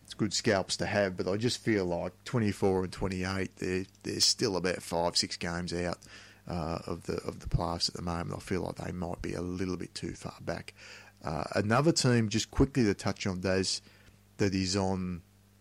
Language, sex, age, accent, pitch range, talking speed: English, male, 30-49, Australian, 95-110 Hz, 205 wpm